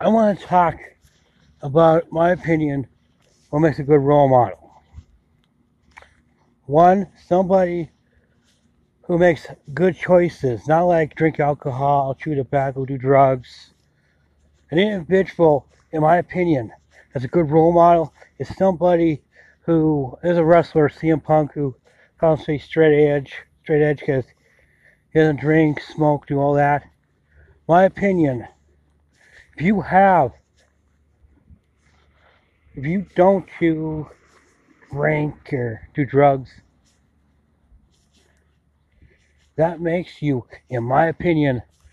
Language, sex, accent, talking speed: English, male, American, 110 wpm